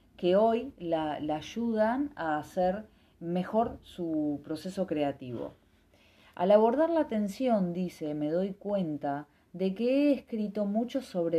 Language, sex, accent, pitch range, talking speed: Spanish, female, Argentinian, 150-210 Hz, 130 wpm